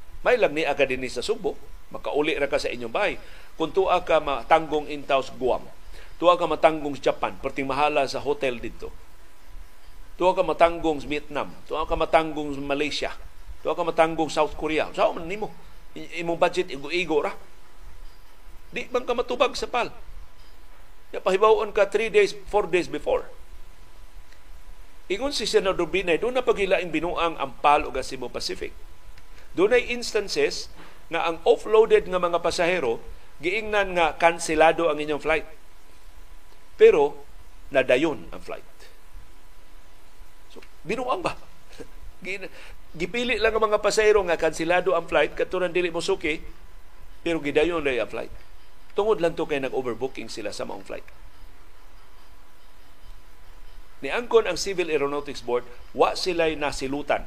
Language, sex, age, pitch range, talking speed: Filipino, male, 50-69, 135-200 Hz, 135 wpm